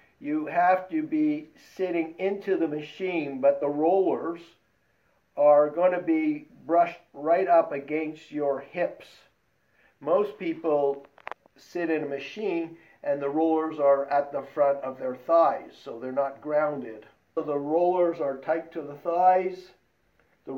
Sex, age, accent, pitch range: male, 50-69, American, 145-175 Hz